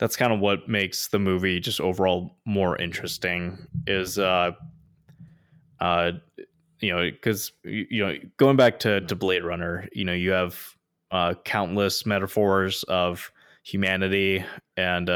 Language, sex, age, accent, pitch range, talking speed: English, male, 20-39, American, 90-100 Hz, 140 wpm